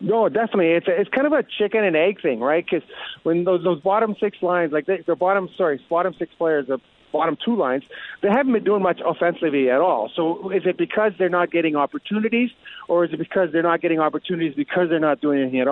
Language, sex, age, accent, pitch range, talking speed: English, male, 40-59, American, 155-195 Hz, 230 wpm